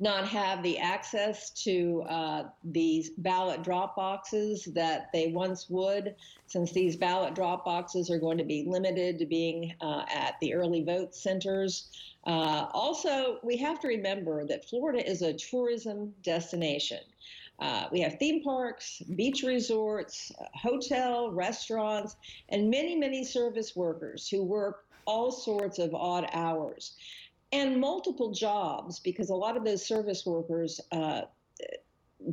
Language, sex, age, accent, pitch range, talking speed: English, female, 50-69, American, 170-220 Hz, 140 wpm